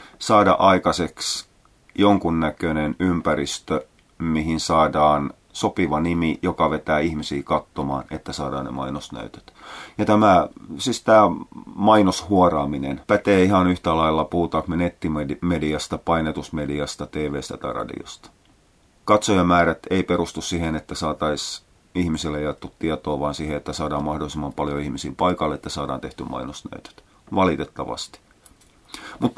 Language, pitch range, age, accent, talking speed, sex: Finnish, 75-100 Hz, 30-49, native, 110 wpm, male